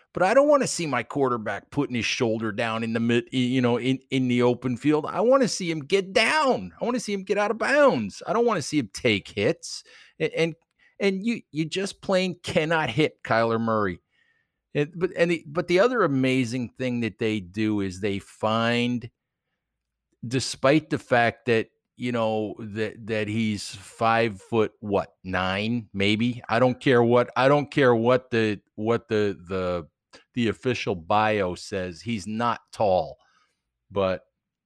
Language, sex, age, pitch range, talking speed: English, male, 50-69, 105-140 Hz, 180 wpm